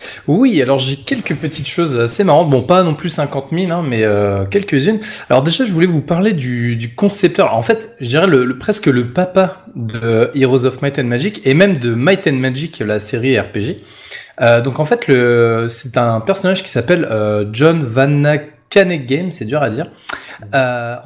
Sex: male